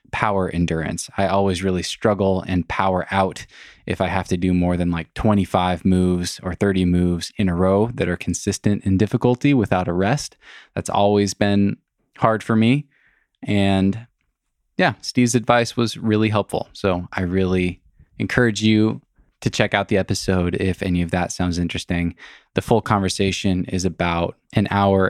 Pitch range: 90-110 Hz